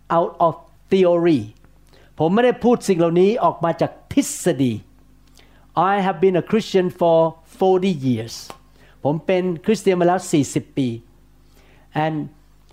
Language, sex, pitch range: Thai, male, 145-205 Hz